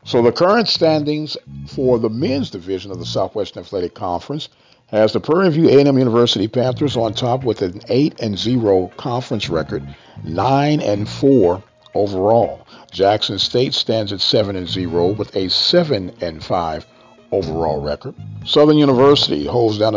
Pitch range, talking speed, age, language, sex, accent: 95-130 Hz, 130 wpm, 50-69, English, male, American